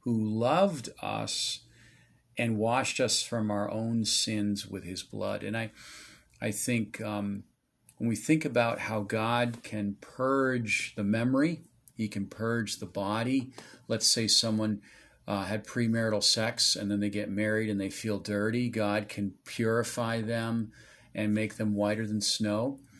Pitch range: 105-120 Hz